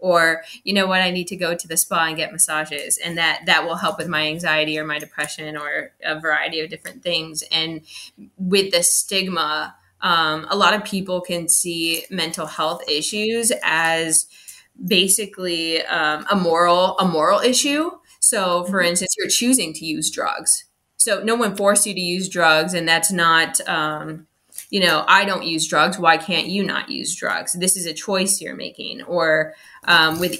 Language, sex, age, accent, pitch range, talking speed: English, female, 20-39, American, 160-185 Hz, 185 wpm